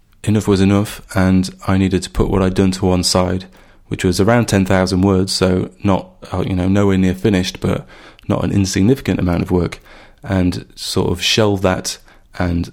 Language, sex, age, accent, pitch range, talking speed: English, male, 30-49, British, 90-100 Hz, 190 wpm